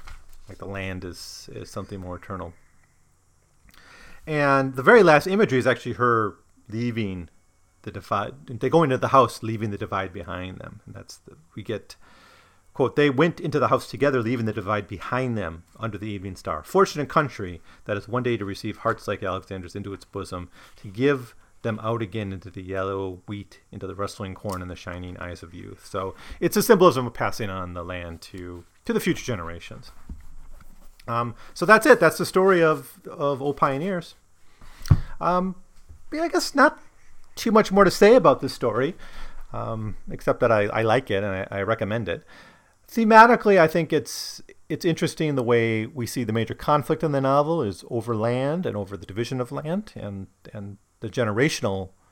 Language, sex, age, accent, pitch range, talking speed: English, male, 30-49, American, 95-140 Hz, 185 wpm